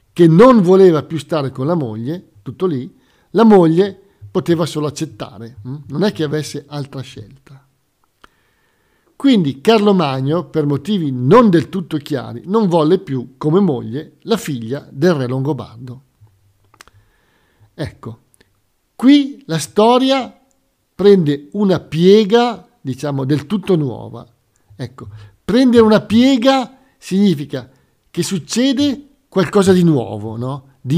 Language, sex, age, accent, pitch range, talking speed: Italian, male, 50-69, native, 130-195 Hz, 120 wpm